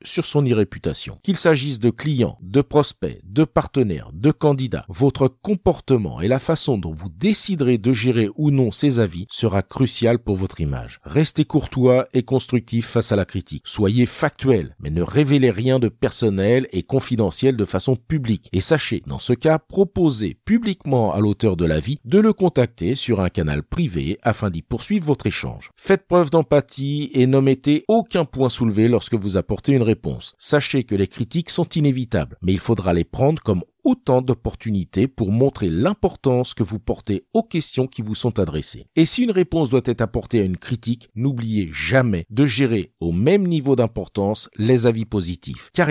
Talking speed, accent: 180 wpm, French